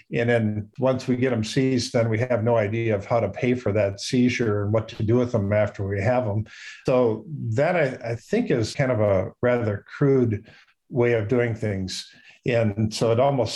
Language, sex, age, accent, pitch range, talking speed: English, male, 50-69, American, 110-130 Hz, 215 wpm